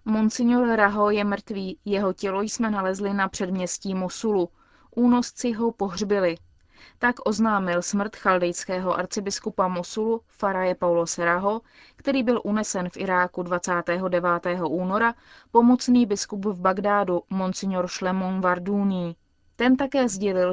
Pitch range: 185-215 Hz